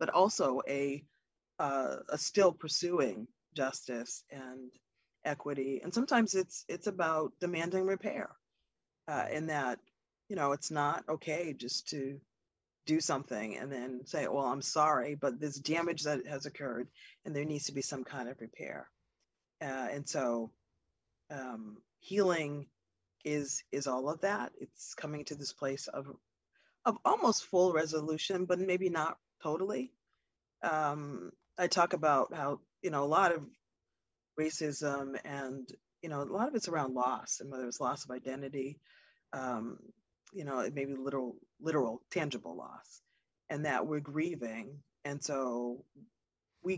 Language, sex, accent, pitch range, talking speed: English, female, American, 130-165 Hz, 150 wpm